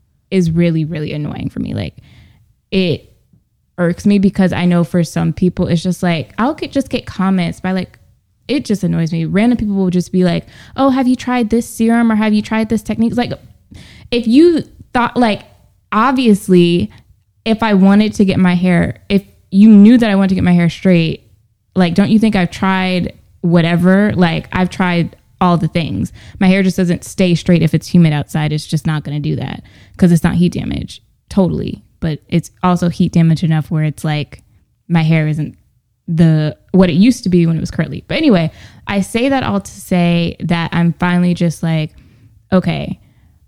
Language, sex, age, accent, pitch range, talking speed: English, female, 20-39, American, 160-200 Hz, 195 wpm